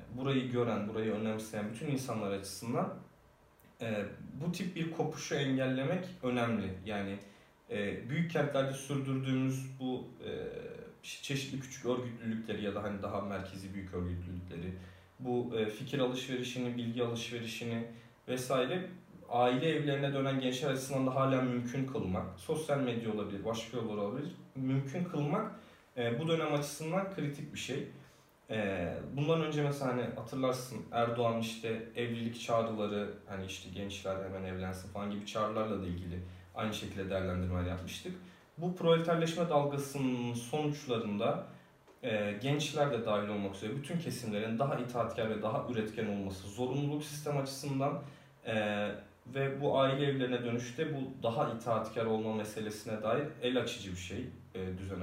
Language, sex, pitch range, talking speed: Turkish, male, 105-140 Hz, 130 wpm